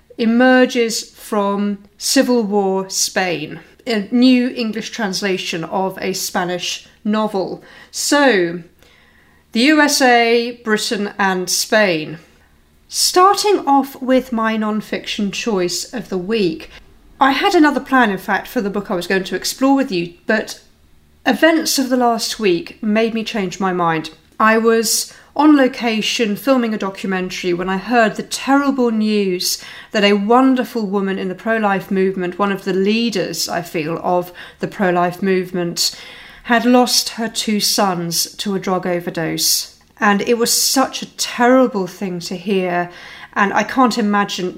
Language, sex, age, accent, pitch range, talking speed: English, female, 40-59, British, 185-235 Hz, 145 wpm